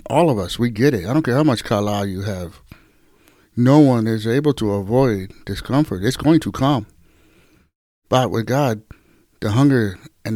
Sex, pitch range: male, 105-135 Hz